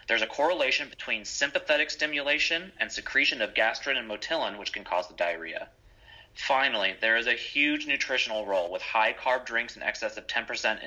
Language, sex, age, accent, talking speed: English, male, 30-49, American, 170 wpm